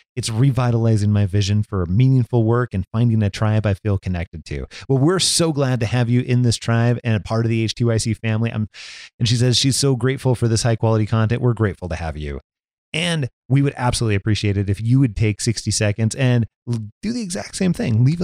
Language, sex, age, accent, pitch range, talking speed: English, male, 30-49, American, 100-130 Hz, 220 wpm